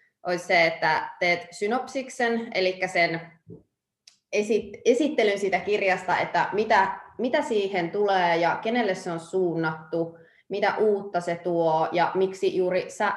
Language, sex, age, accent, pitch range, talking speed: Finnish, female, 20-39, native, 165-190 Hz, 130 wpm